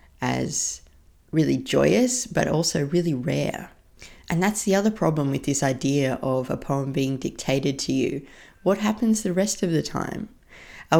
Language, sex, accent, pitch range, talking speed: English, female, Australian, 125-155 Hz, 165 wpm